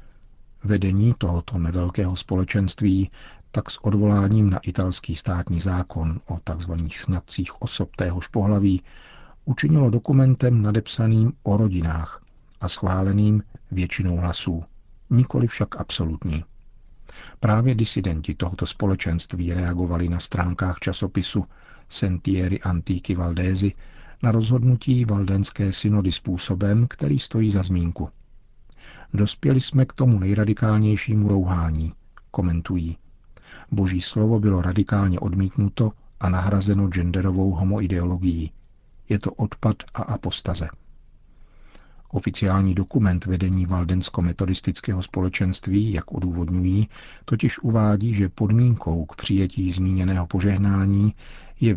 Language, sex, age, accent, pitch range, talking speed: Czech, male, 50-69, native, 90-105 Hz, 100 wpm